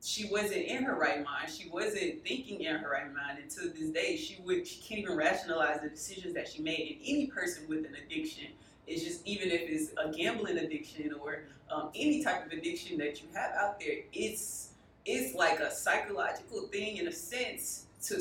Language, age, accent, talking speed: English, 20-39, American, 210 wpm